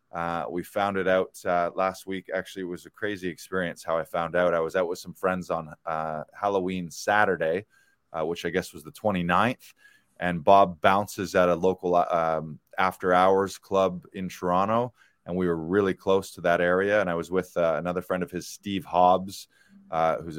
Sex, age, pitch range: male, 20-39, 85-100 Hz